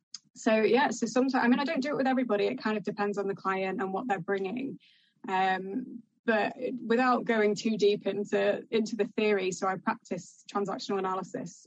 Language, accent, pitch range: English, British, 190-225 Hz